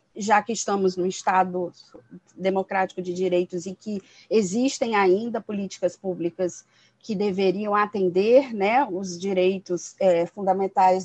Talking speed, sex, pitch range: 115 wpm, female, 190-245 Hz